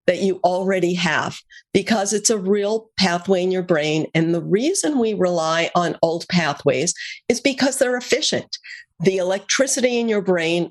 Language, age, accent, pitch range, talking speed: English, 50-69, American, 180-240 Hz, 165 wpm